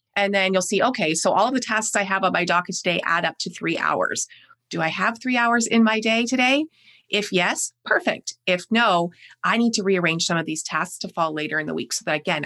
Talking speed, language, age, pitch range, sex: 250 wpm, English, 30-49, 170-220 Hz, female